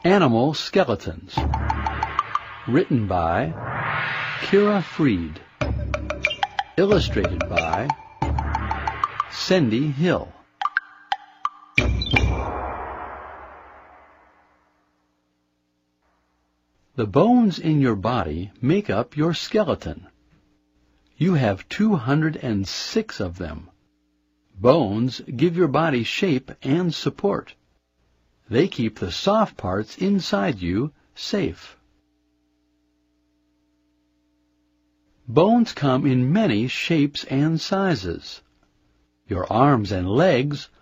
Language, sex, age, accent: Chinese, male, 60-79, American